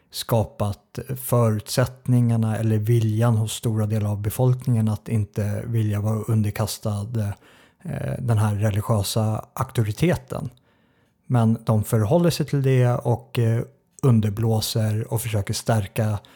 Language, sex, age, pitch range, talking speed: Swedish, male, 50-69, 105-125 Hz, 105 wpm